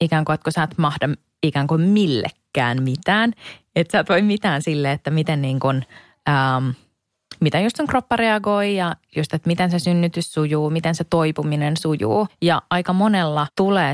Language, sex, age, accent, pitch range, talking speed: Finnish, female, 20-39, native, 145-170 Hz, 175 wpm